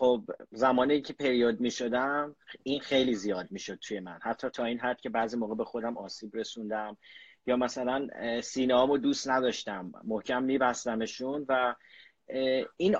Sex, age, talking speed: male, 30-49, 155 wpm